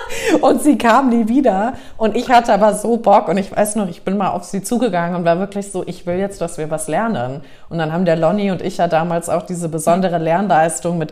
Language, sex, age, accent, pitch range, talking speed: German, female, 30-49, German, 165-200 Hz, 250 wpm